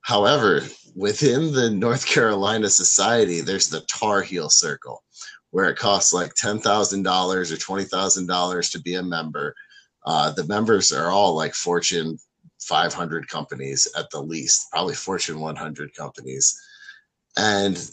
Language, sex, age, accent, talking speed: English, male, 30-49, American, 130 wpm